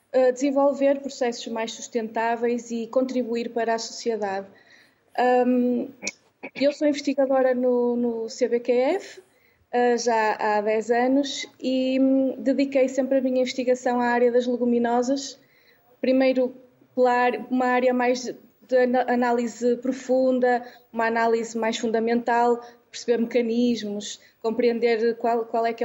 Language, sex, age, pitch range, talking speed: Portuguese, female, 20-39, 235-265 Hz, 110 wpm